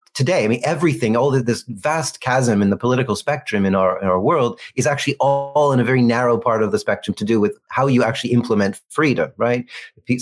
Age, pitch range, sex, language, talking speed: 30-49, 105-125 Hz, male, English, 210 wpm